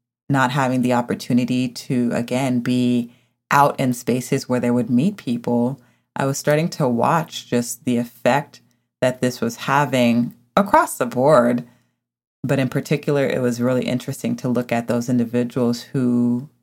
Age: 30-49